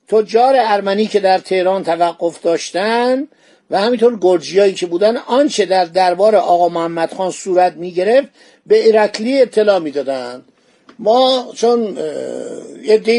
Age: 50-69